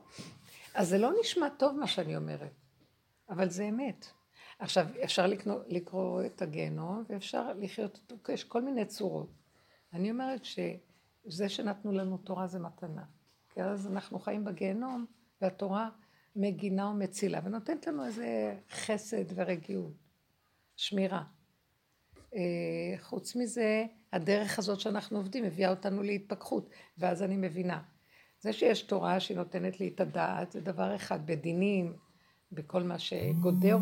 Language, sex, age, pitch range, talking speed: Hebrew, female, 60-79, 180-210 Hz, 125 wpm